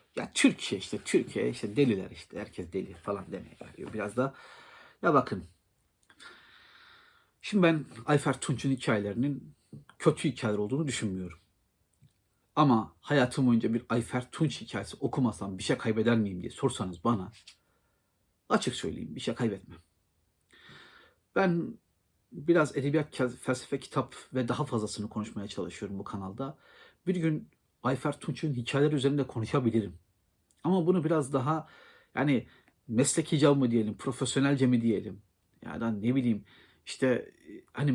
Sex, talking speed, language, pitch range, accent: male, 130 wpm, Turkish, 105-150 Hz, native